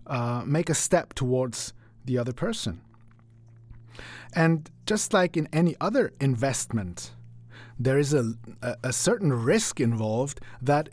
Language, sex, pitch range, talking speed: English, male, 115-145 Hz, 125 wpm